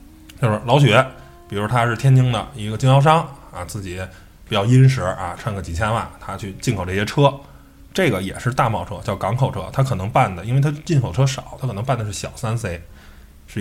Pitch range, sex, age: 95-130 Hz, male, 20-39